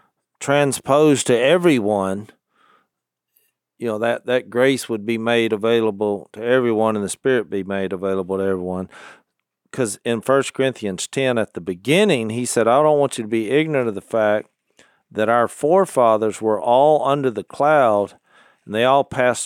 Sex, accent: male, American